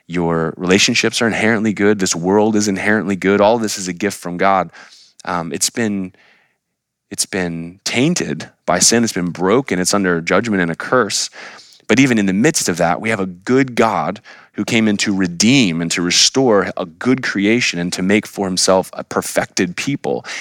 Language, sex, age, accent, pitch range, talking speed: English, male, 20-39, American, 90-110 Hz, 190 wpm